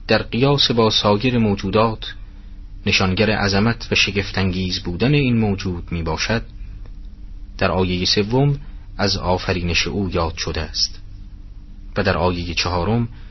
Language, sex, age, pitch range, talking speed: Persian, male, 30-49, 95-110 Hz, 120 wpm